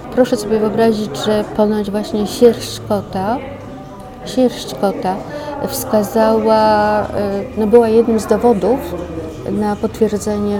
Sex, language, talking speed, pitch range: female, Polish, 90 wpm, 205-230 Hz